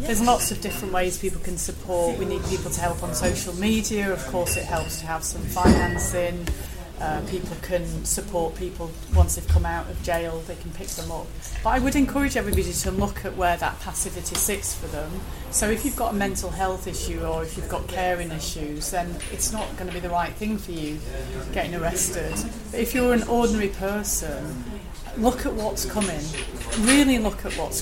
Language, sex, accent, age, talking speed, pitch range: English, female, British, 30-49, 205 wpm, 165-210 Hz